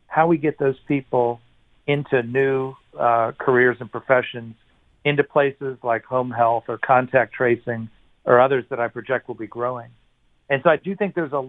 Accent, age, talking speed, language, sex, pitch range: American, 40-59, 180 wpm, English, male, 120-135 Hz